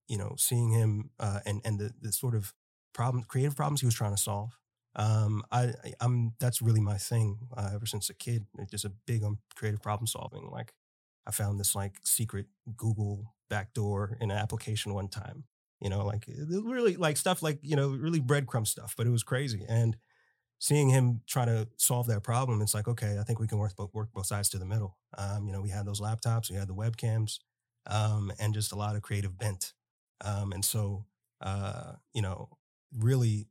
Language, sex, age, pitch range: English, male, 30-49, 105-120 Hz